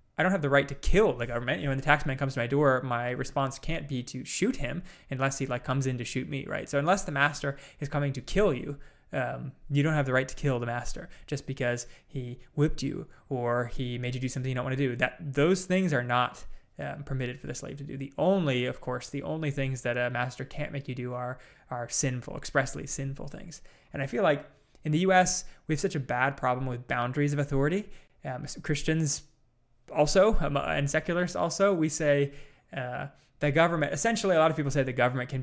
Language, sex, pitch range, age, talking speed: English, male, 130-155 Hz, 20-39, 235 wpm